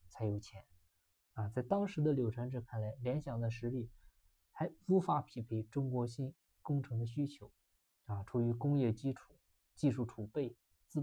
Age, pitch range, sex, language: 20-39, 105-130 Hz, male, Chinese